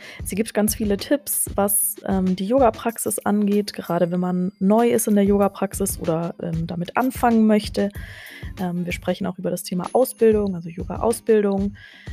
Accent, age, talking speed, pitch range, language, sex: German, 20-39, 165 wpm, 185-220 Hz, German, female